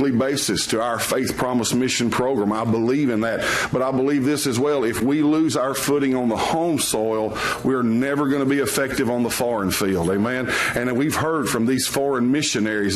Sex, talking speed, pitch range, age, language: male, 205 wpm, 120-140 Hz, 50-69, English